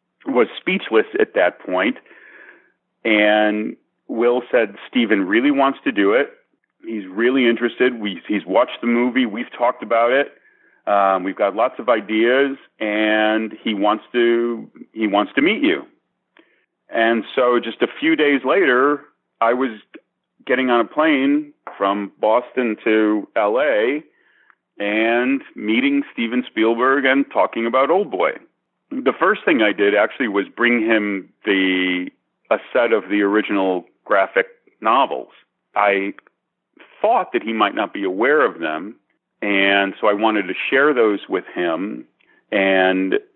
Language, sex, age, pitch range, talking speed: English, male, 40-59, 100-125 Hz, 145 wpm